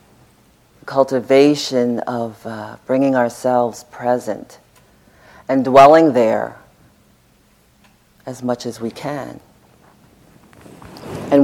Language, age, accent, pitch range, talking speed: English, 50-69, American, 115-130 Hz, 80 wpm